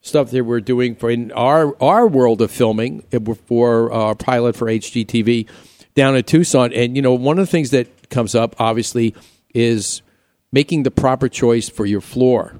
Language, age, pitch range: English, 50-69, 110-130 Hz